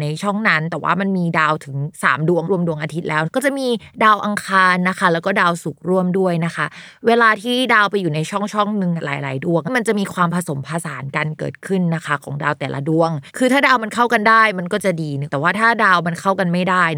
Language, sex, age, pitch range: Thai, female, 20-39, 160-210 Hz